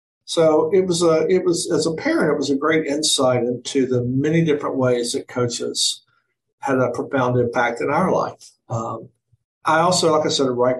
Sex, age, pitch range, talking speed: male, 50-69, 120-145 Hz, 195 wpm